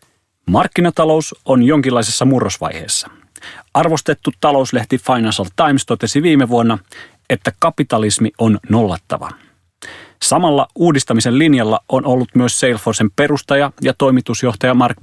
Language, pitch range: Finnish, 110-140 Hz